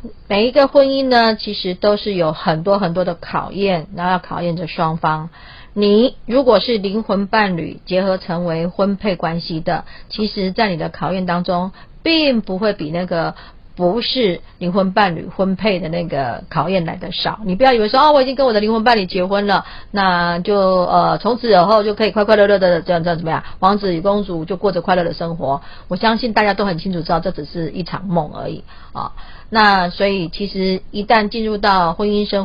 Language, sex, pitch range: Chinese, female, 175-215 Hz